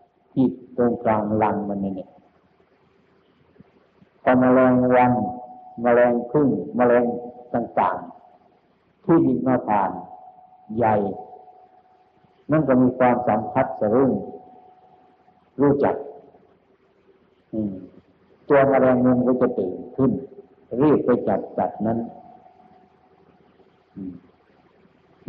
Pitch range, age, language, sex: 110-140 Hz, 50-69, Thai, male